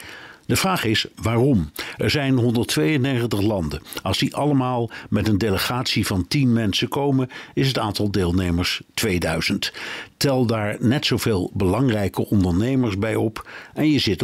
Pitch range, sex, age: 100-125 Hz, male, 60-79